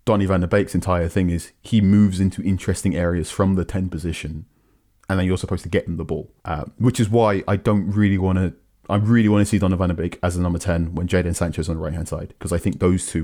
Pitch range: 85-105 Hz